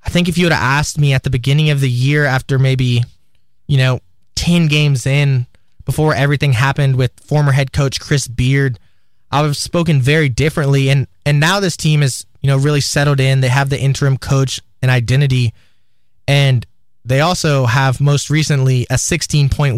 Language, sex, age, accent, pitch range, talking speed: English, male, 20-39, American, 125-150 Hz, 190 wpm